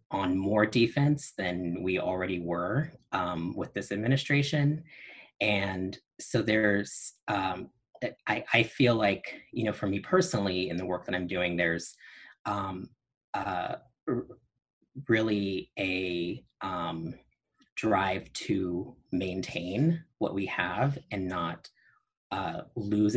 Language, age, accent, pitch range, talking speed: English, 30-49, American, 95-130 Hz, 120 wpm